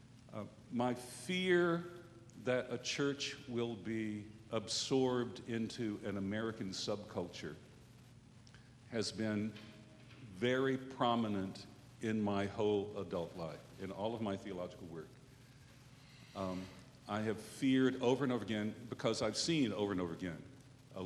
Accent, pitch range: American, 100-130 Hz